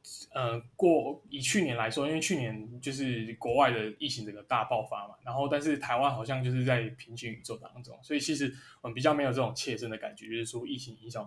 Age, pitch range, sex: 20-39, 120-145 Hz, male